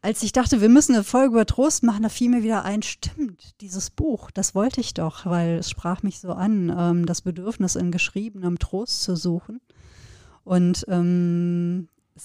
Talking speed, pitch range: 180 wpm, 180-215 Hz